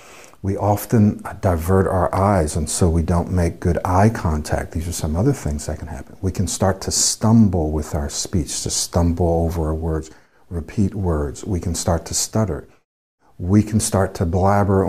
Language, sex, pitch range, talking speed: English, male, 80-105 Hz, 185 wpm